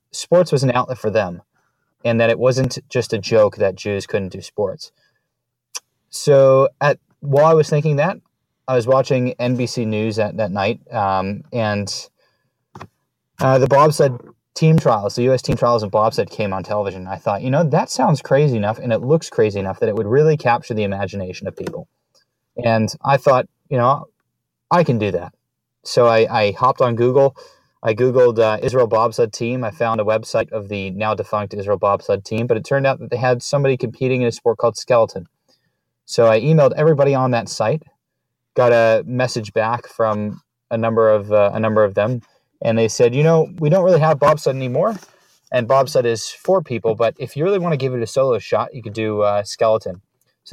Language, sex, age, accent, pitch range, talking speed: English, male, 30-49, American, 110-135 Hz, 205 wpm